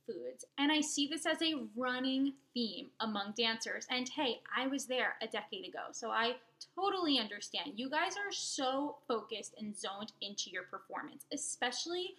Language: English